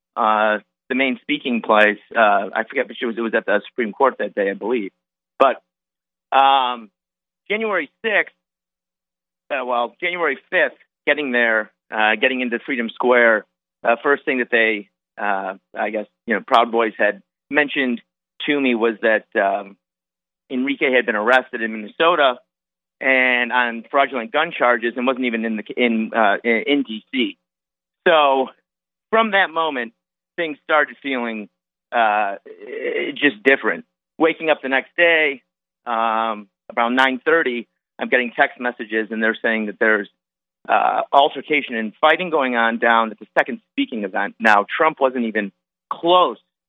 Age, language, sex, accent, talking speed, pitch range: 40-59, English, male, American, 150 wpm, 105-135 Hz